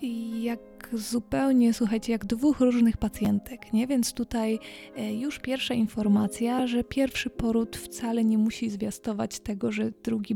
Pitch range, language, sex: 210-230 Hz, Polish, female